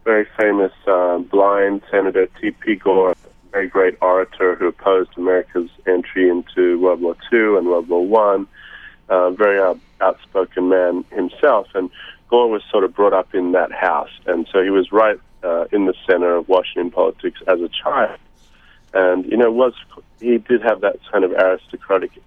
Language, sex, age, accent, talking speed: English, male, 40-59, American, 180 wpm